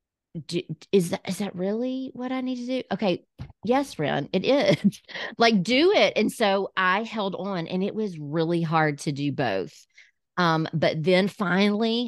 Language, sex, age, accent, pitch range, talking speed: English, female, 40-59, American, 155-200 Hz, 180 wpm